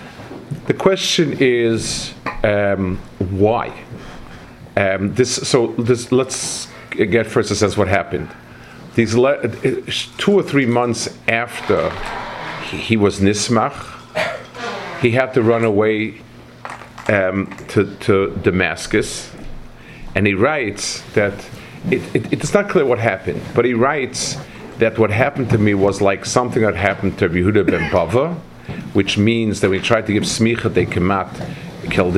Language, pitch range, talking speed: English, 100-120 Hz, 145 wpm